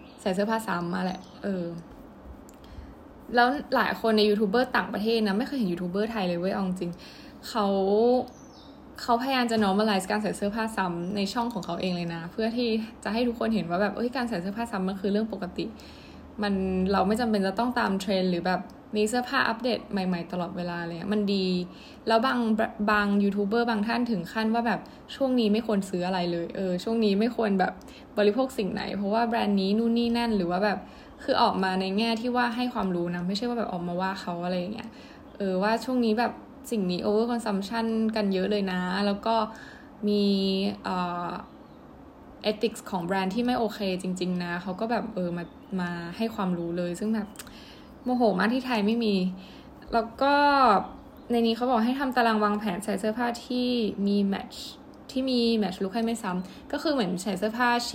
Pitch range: 190-235 Hz